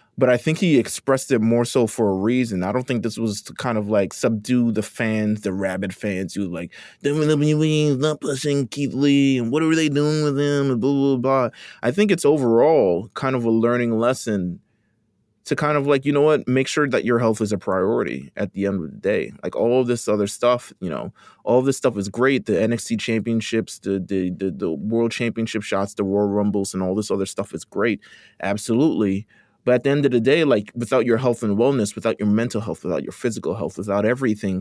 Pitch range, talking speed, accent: 105-130 Hz, 230 wpm, American